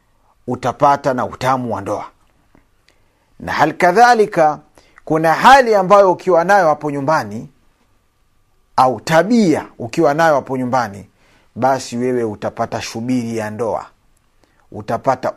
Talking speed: 110 wpm